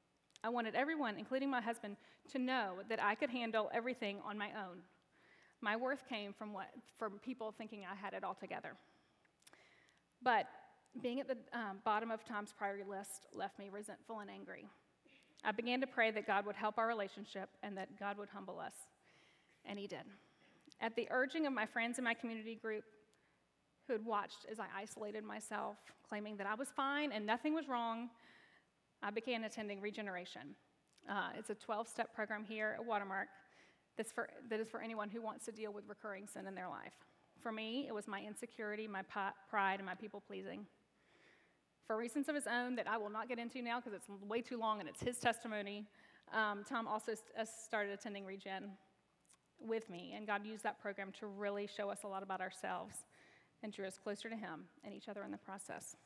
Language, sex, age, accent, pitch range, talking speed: English, female, 30-49, American, 205-235 Hz, 195 wpm